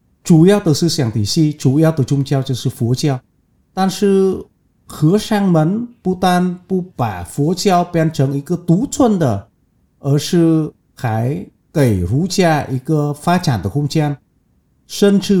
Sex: male